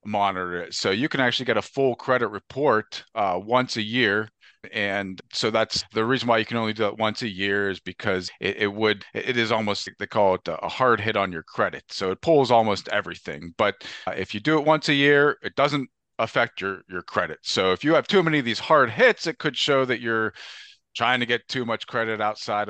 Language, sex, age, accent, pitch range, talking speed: English, male, 40-59, American, 100-130 Hz, 235 wpm